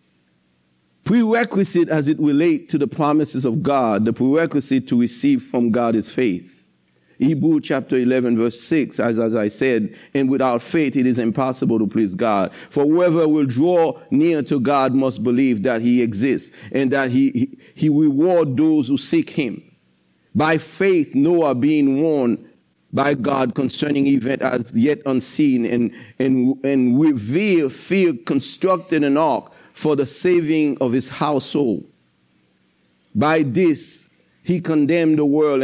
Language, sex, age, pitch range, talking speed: English, male, 50-69, 125-170 Hz, 150 wpm